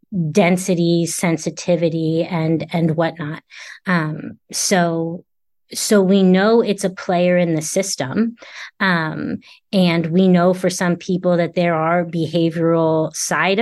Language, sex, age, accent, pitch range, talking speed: English, female, 30-49, American, 170-205 Hz, 125 wpm